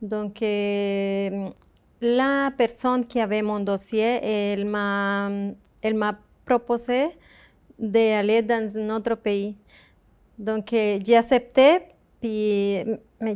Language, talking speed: French, 100 wpm